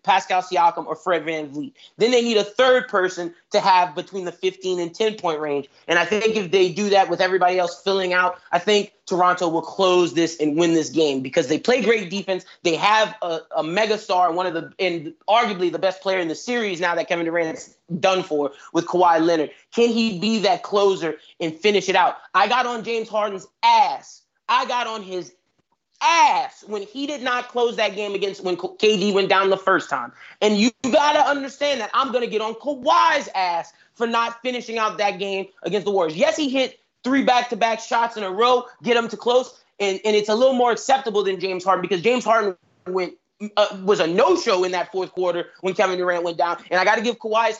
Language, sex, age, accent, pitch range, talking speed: English, male, 30-49, American, 180-235 Hz, 225 wpm